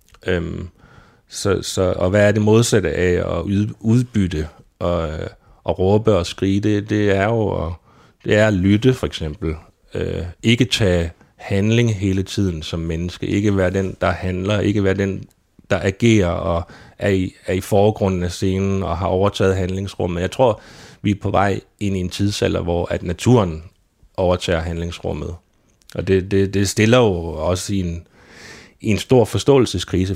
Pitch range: 90-100 Hz